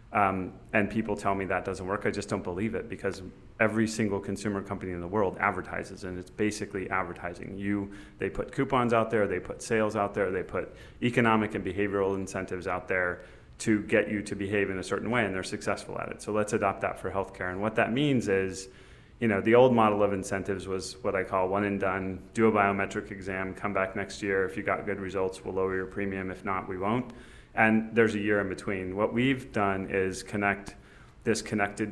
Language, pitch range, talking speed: English, 95-110 Hz, 220 wpm